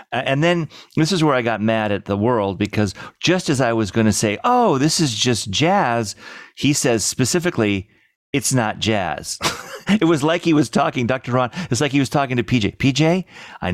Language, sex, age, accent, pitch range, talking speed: English, male, 40-59, American, 100-140 Hz, 205 wpm